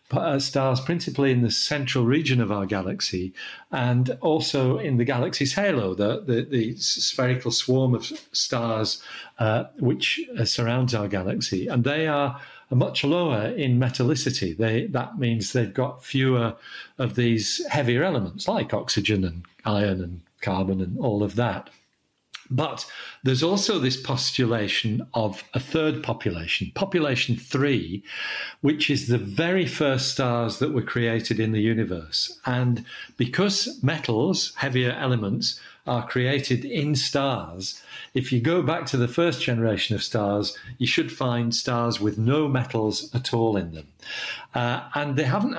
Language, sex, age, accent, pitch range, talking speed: English, male, 50-69, British, 115-140 Hz, 145 wpm